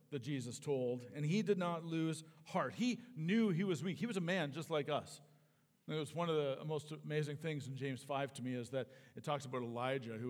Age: 50-69